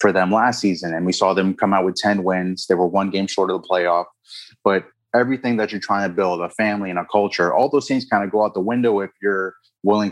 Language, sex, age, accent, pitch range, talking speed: English, male, 20-39, American, 90-105 Hz, 255 wpm